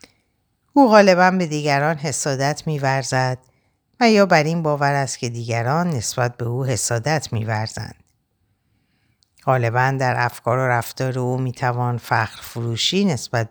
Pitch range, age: 115-140 Hz, 60-79